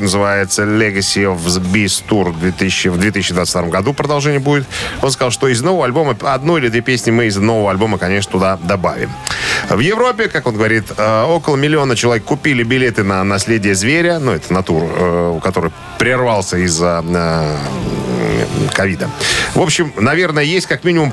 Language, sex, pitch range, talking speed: Russian, male, 100-135 Hz, 155 wpm